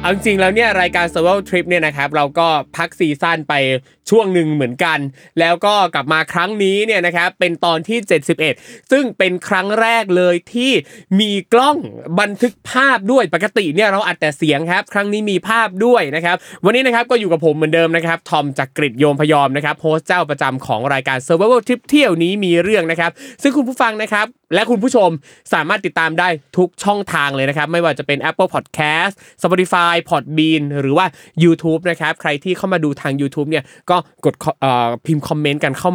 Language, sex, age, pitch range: Thai, male, 20-39, 150-200 Hz